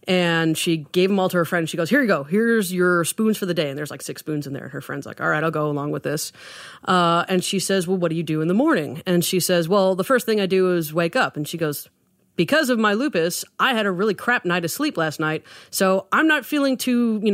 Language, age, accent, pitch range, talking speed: English, 30-49, American, 160-195 Hz, 285 wpm